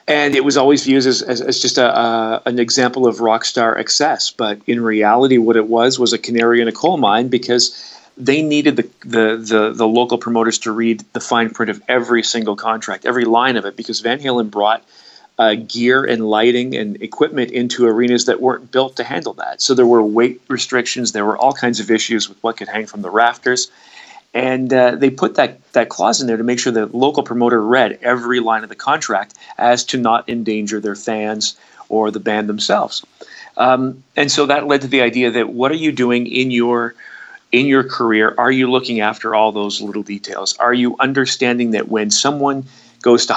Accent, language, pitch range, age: American, English, 115-130 Hz, 40-59